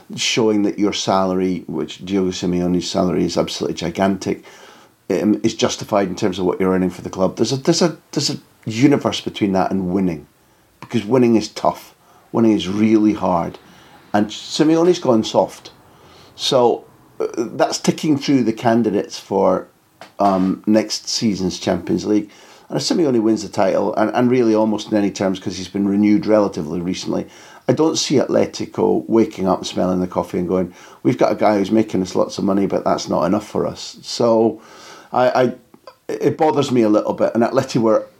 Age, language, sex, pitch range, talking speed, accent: 50-69, English, male, 95-115 Hz, 185 wpm, British